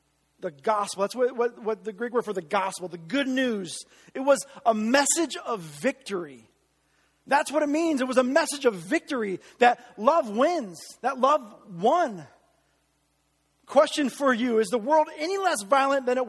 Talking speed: 175 wpm